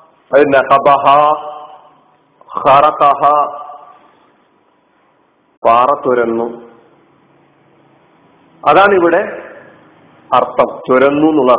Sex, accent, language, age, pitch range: male, native, Malayalam, 50-69, 140-195 Hz